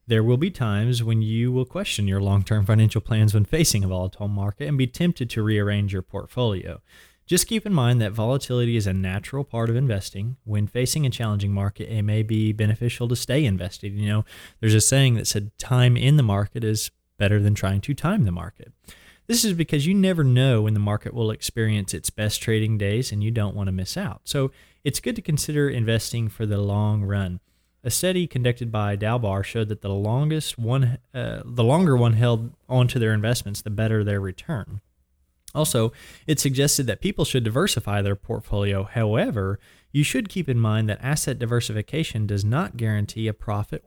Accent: American